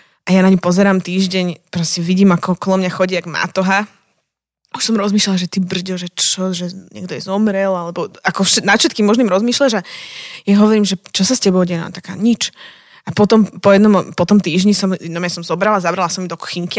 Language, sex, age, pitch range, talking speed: Slovak, female, 20-39, 185-210 Hz, 205 wpm